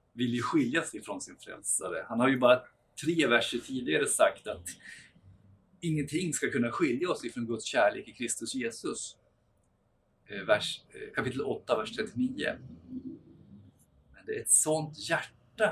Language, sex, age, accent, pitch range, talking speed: Swedish, male, 50-69, native, 120-155 Hz, 145 wpm